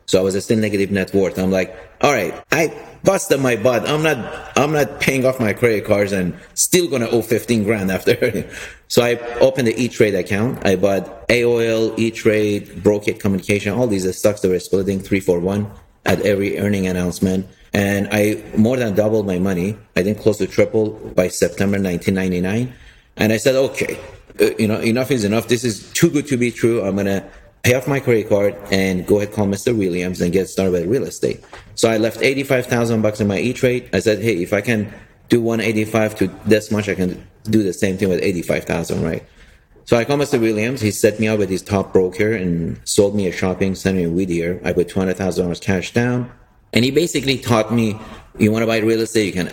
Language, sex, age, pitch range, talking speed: English, male, 30-49, 95-115 Hz, 210 wpm